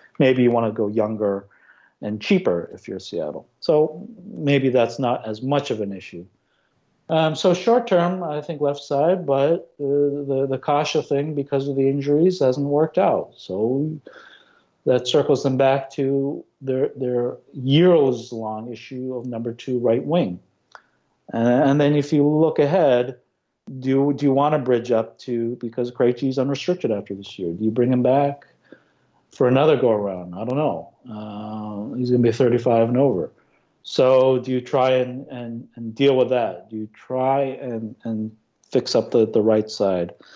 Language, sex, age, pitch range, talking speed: English, male, 50-69, 115-140 Hz, 170 wpm